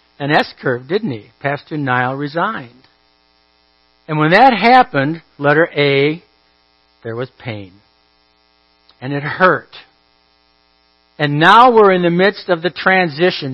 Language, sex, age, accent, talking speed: English, male, 60-79, American, 130 wpm